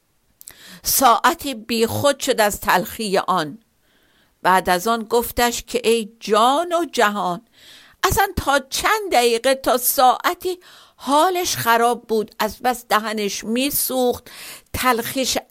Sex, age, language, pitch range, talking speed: female, 50-69, Persian, 215-260 Hz, 115 wpm